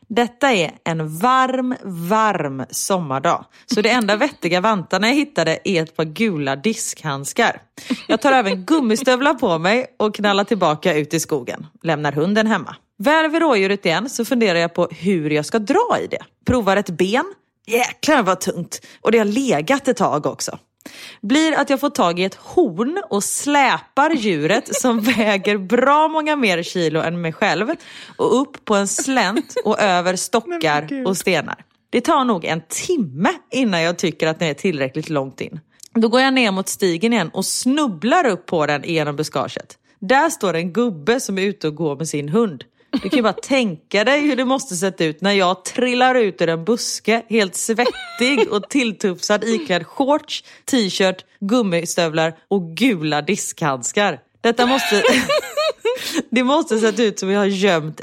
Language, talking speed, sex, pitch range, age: Swedish, 175 wpm, female, 170-250 Hz, 30-49